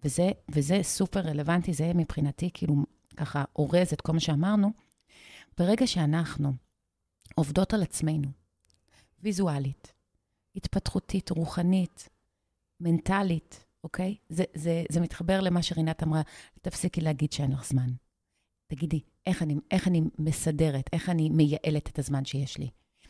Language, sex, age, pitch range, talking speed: Hebrew, female, 30-49, 150-180 Hz, 125 wpm